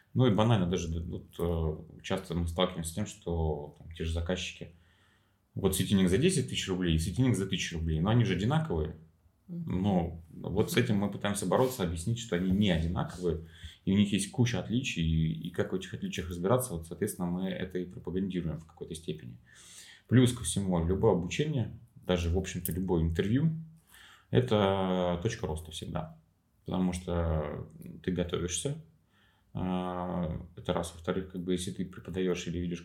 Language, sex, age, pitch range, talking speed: Russian, male, 30-49, 85-95 Hz, 165 wpm